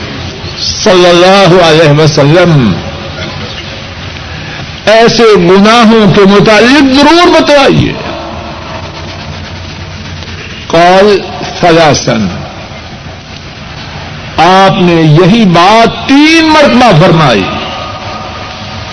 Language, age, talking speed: Urdu, 60-79, 60 wpm